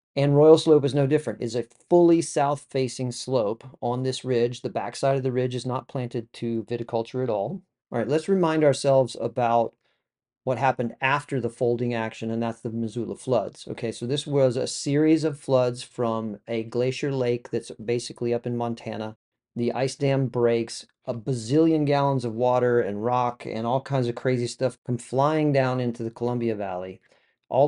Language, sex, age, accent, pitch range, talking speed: English, male, 40-59, American, 115-135 Hz, 185 wpm